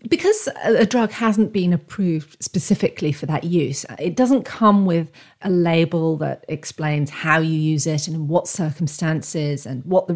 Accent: British